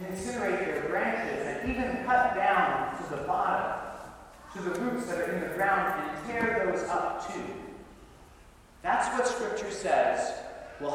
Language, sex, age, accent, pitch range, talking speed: English, male, 40-59, American, 150-220 Hz, 155 wpm